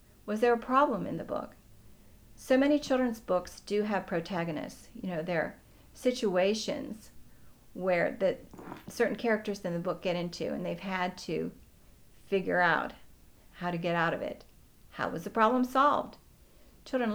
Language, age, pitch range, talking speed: English, 50-69, 180-220 Hz, 160 wpm